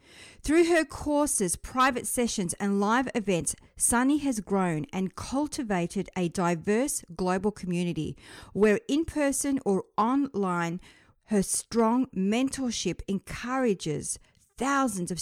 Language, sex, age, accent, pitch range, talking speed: English, female, 50-69, Australian, 180-235 Hz, 110 wpm